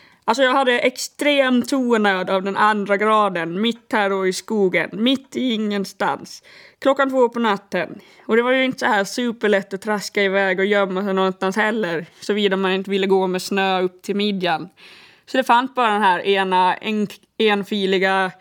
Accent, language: native, Swedish